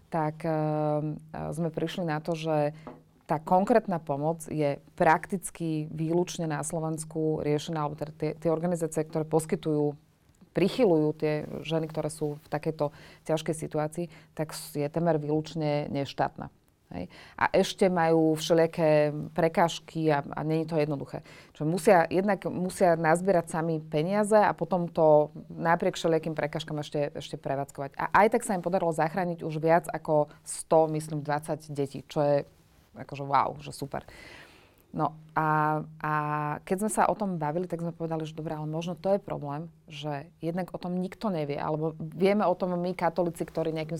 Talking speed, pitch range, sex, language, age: 160 wpm, 155-175 Hz, female, Slovak, 30-49